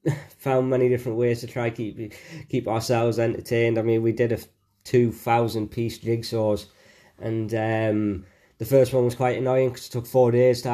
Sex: male